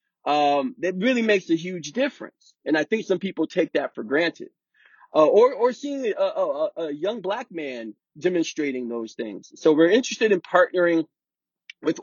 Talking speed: 175 wpm